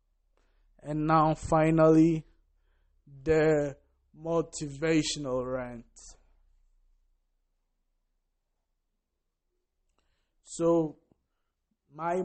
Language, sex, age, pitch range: English, male, 20-39, 140-170 Hz